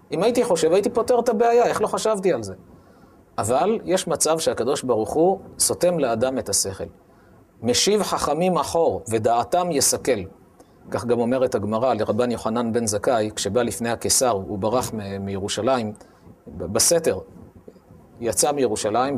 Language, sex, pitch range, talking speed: Hebrew, male, 115-185 Hz, 140 wpm